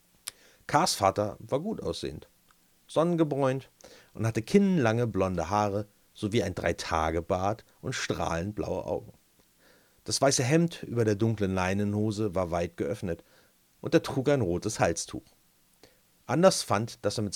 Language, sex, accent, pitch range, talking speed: German, male, German, 95-150 Hz, 135 wpm